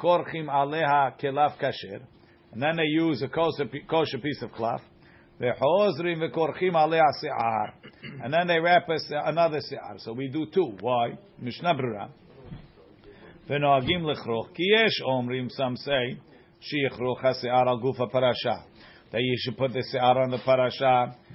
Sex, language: male, English